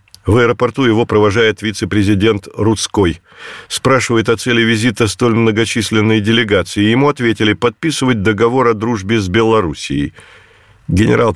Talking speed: 115 wpm